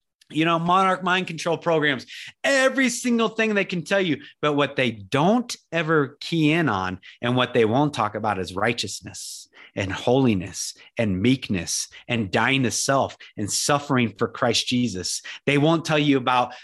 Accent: American